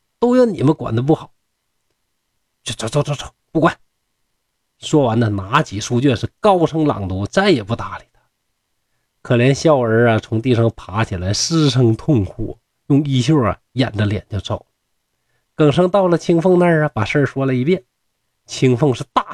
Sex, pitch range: male, 110-165 Hz